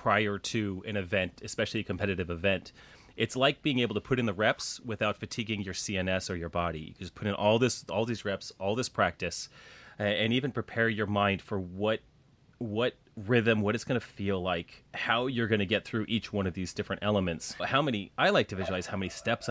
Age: 30-49